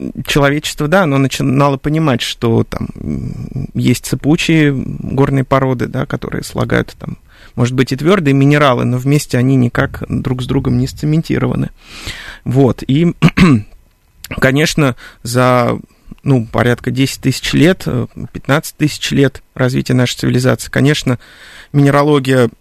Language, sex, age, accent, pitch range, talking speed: Russian, male, 30-49, native, 120-140 Hz, 120 wpm